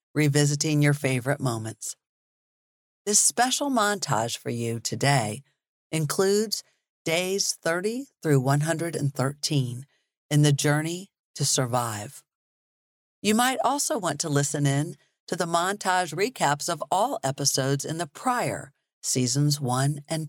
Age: 50-69